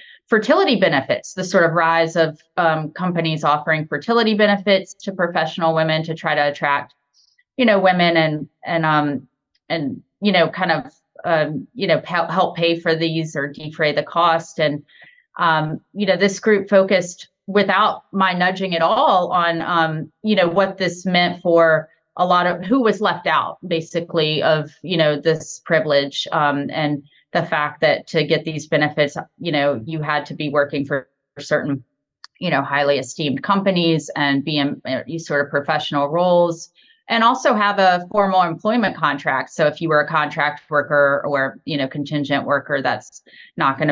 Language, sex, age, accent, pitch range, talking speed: English, female, 30-49, American, 145-185 Hz, 180 wpm